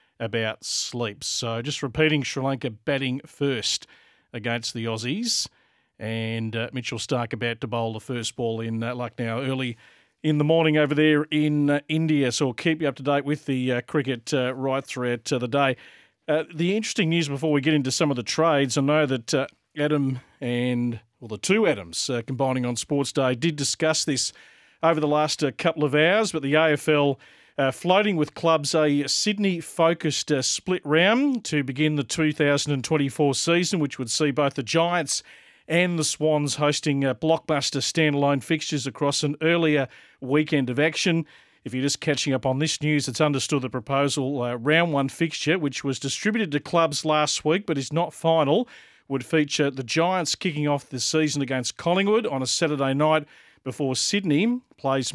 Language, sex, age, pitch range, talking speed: English, male, 40-59, 130-160 Hz, 185 wpm